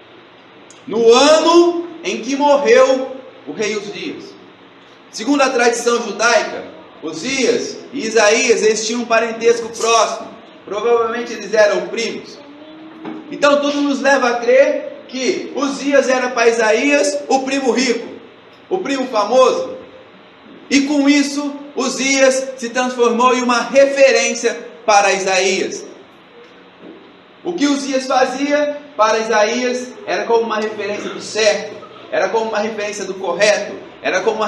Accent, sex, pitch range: Brazilian, male, 230-290 Hz